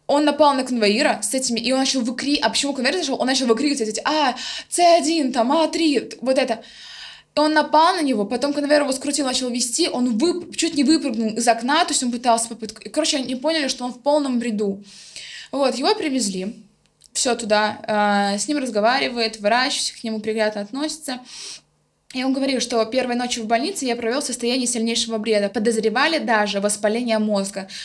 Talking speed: 180 wpm